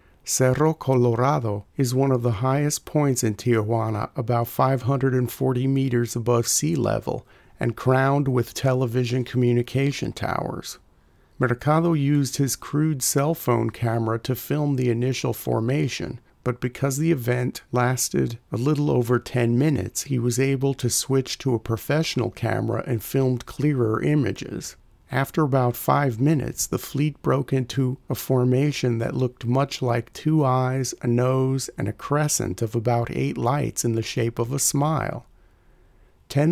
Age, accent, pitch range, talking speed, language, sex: 50-69, American, 120-140 Hz, 145 wpm, English, male